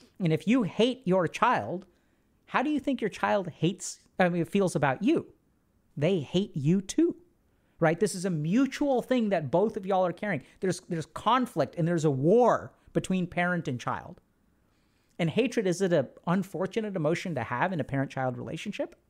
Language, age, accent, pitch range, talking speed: English, 40-59, American, 140-195 Hz, 180 wpm